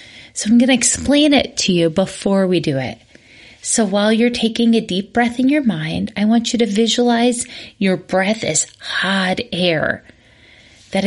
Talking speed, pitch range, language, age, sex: 180 wpm, 175-235 Hz, English, 30-49, female